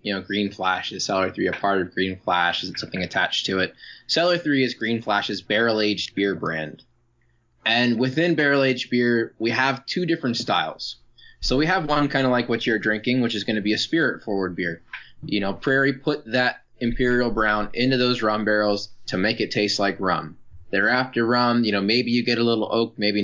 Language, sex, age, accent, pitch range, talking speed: English, male, 20-39, American, 105-125 Hz, 210 wpm